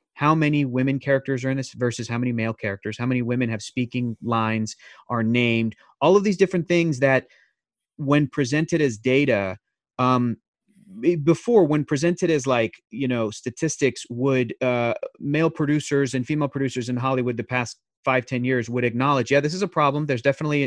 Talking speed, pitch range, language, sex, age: 180 wpm, 120-145 Hz, English, male, 30-49